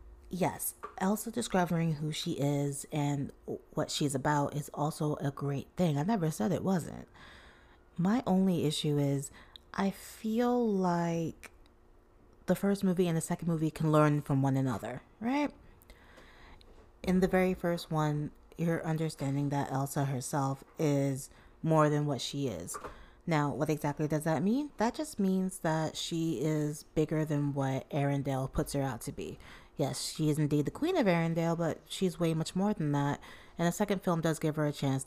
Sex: female